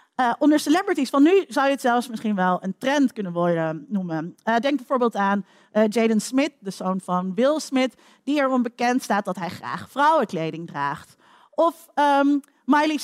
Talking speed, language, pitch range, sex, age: 185 wpm, Dutch, 215-310 Hz, female, 40-59